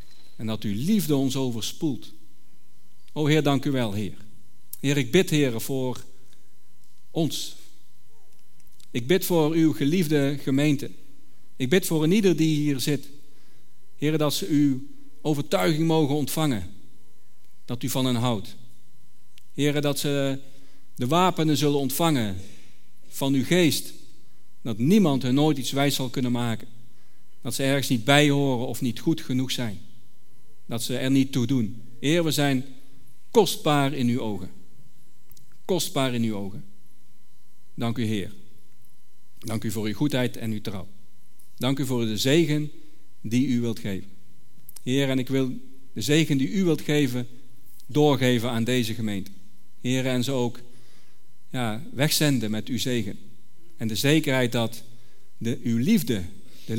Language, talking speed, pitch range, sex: Dutch, 145 wpm, 115-145 Hz, male